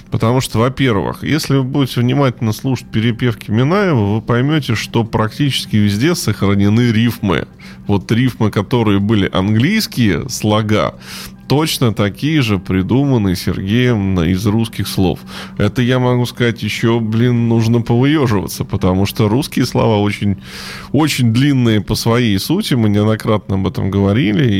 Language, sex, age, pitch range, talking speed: Russian, male, 20-39, 100-125 Hz, 130 wpm